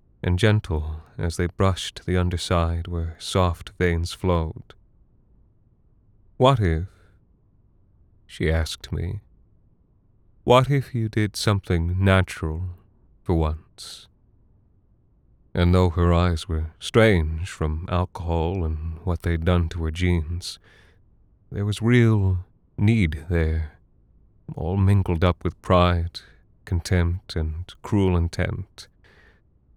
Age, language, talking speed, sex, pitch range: 30-49, English, 105 wpm, male, 85-100 Hz